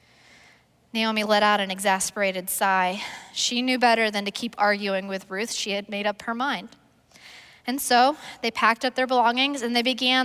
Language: English